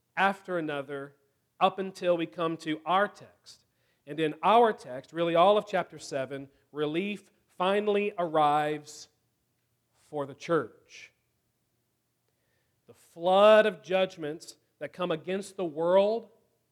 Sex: male